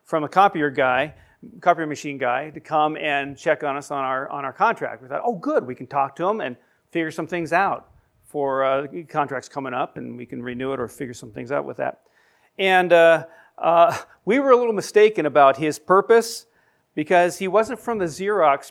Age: 40-59